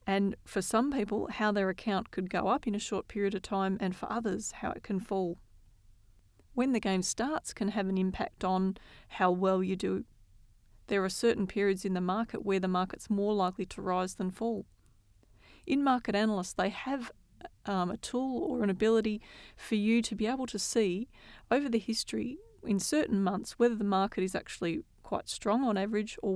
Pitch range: 185-215 Hz